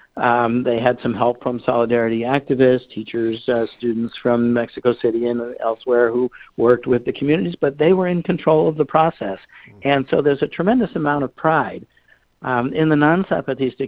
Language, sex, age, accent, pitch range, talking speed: English, male, 60-79, American, 120-145 Hz, 175 wpm